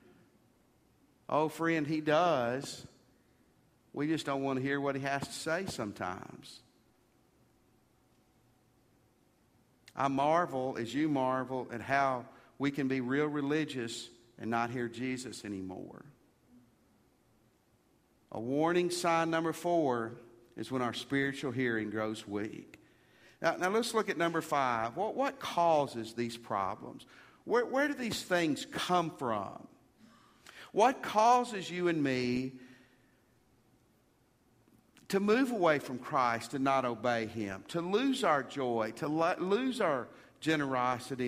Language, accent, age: English, American, 50-69